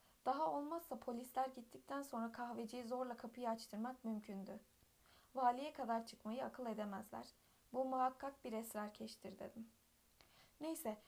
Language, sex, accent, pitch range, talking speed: Turkish, female, native, 220-265 Hz, 115 wpm